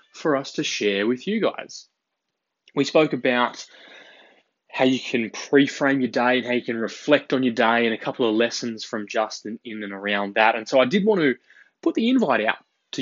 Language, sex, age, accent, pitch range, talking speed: English, male, 20-39, Australian, 110-150 Hz, 210 wpm